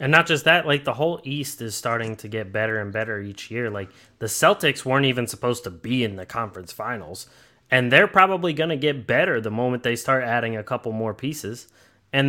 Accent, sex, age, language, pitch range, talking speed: American, male, 20-39, English, 120-155 Hz, 225 wpm